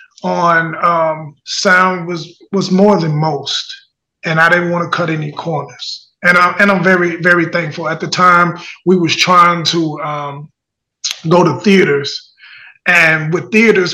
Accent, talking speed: American, 160 wpm